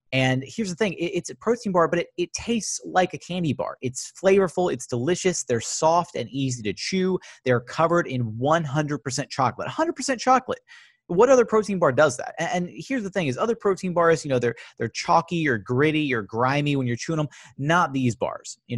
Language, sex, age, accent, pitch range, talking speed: English, male, 30-49, American, 125-175 Hz, 210 wpm